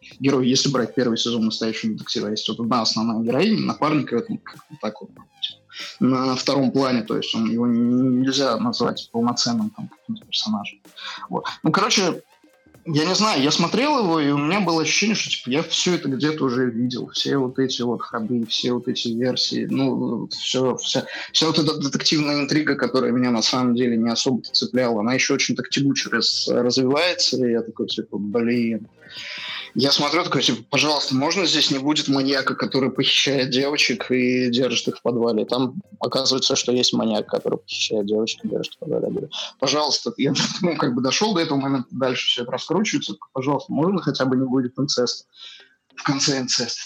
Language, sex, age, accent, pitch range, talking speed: Russian, male, 20-39, native, 120-150 Hz, 180 wpm